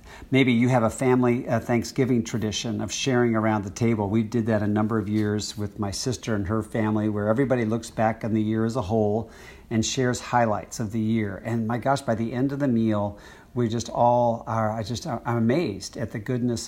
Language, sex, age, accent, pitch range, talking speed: English, male, 50-69, American, 110-125 Hz, 220 wpm